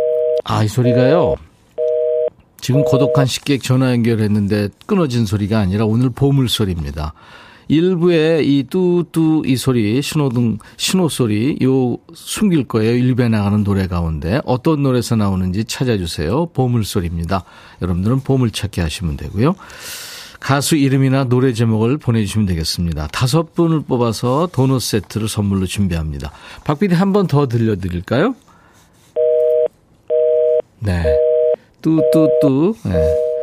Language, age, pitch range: Korean, 40-59, 105-155 Hz